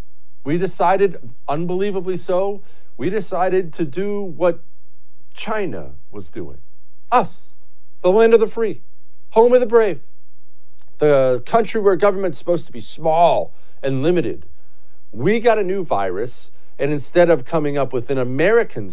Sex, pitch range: male, 140-225 Hz